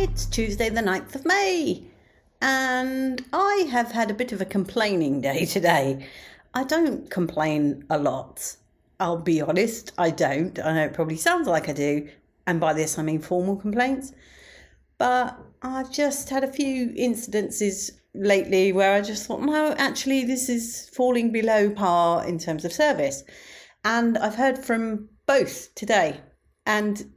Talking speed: 160 wpm